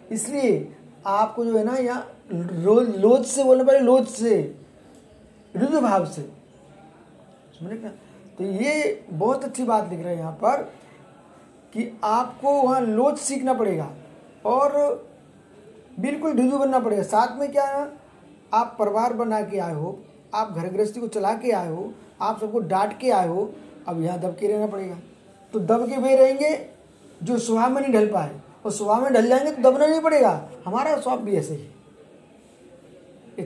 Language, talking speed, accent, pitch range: Hindi, 160 wpm, native, 190-255 Hz